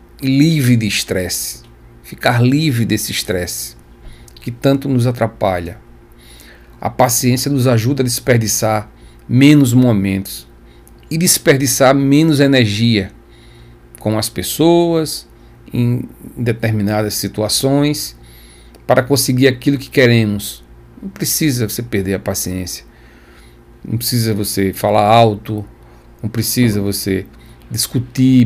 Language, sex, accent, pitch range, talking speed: Portuguese, male, Brazilian, 100-125 Hz, 105 wpm